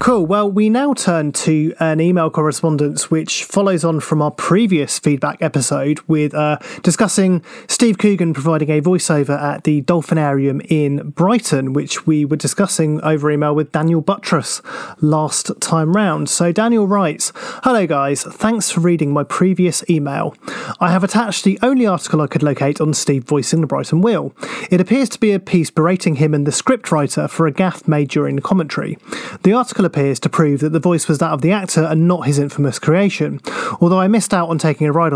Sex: male